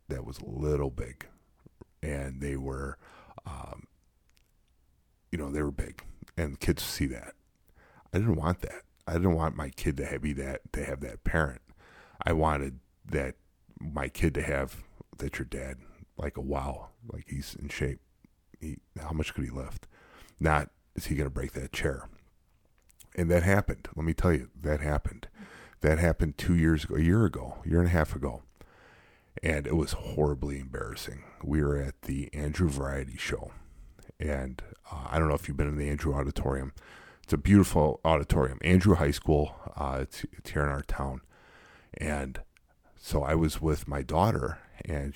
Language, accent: English, American